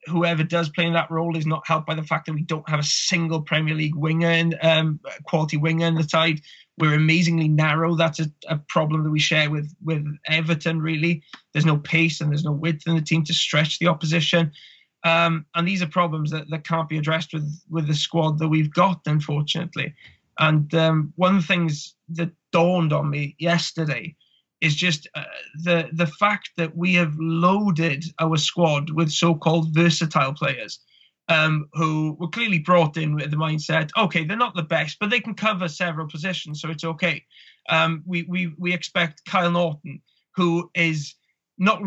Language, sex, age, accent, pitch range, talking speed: English, male, 20-39, British, 155-170 Hz, 190 wpm